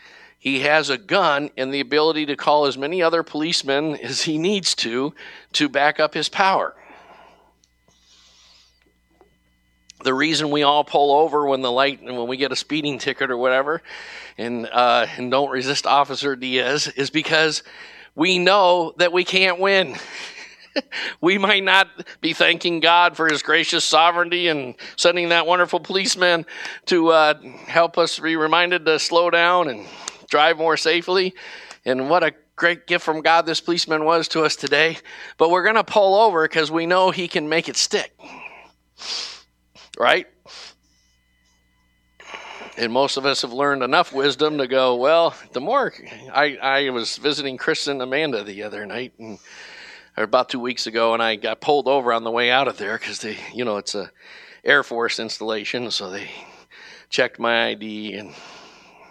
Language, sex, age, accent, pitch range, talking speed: English, male, 50-69, American, 125-170 Hz, 170 wpm